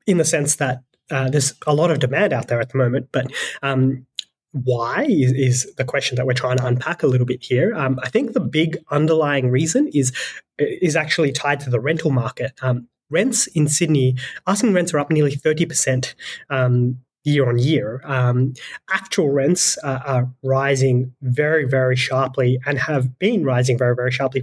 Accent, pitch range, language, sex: Australian, 130-155 Hz, English, male